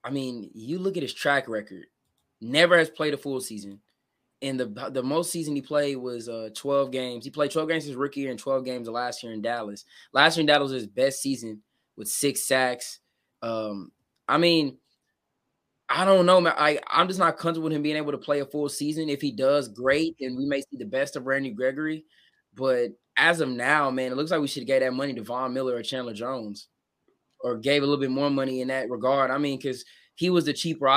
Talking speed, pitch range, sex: 235 wpm, 125-150 Hz, male